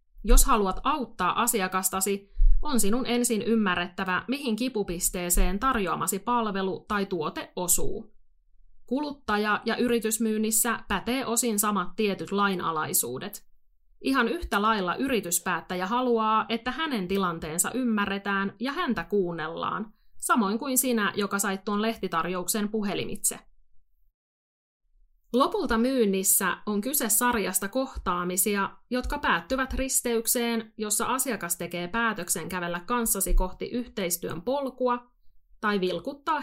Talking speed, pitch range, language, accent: 105 wpm, 180-235 Hz, Finnish, native